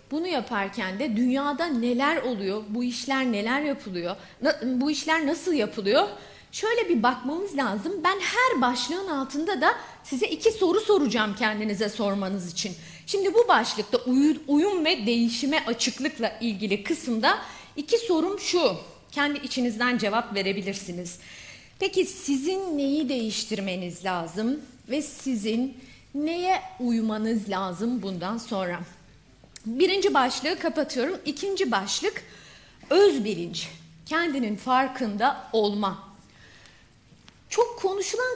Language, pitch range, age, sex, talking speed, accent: Turkish, 220-335 Hz, 40-59, female, 110 wpm, native